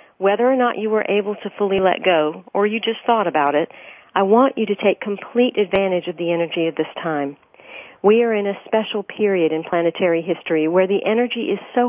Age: 50-69